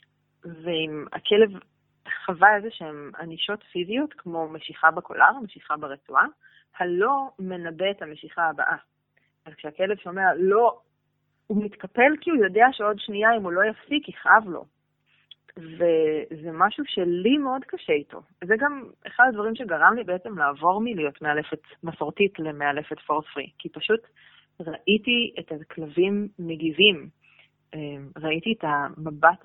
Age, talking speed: 20-39, 130 wpm